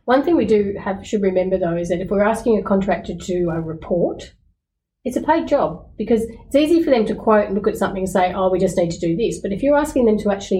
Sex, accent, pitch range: female, Australian, 180-220 Hz